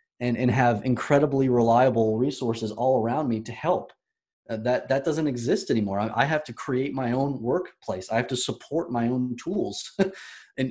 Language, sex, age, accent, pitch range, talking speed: English, male, 30-49, American, 110-135 Hz, 185 wpm